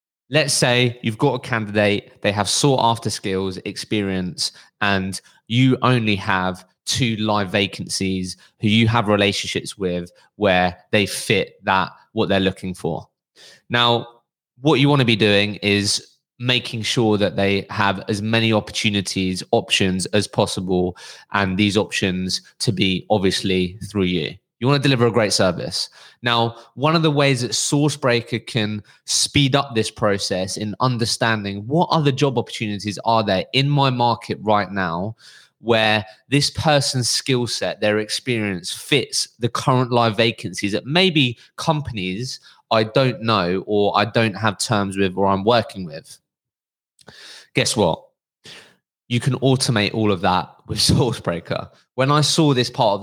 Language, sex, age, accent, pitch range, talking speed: English, male, 20-39, British, 100-125 Hz, 155 wpm